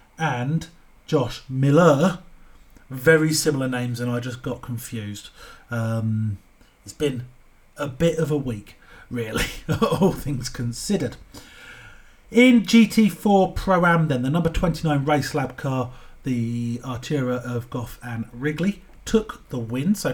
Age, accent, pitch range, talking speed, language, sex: 40-59, British, 120-160 Hz, 130 wpm, English, male